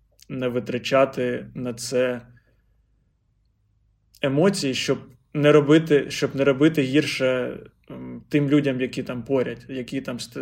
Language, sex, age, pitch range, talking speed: Ukrainian, male, 20-39, 120-135 Hz, 110 wpm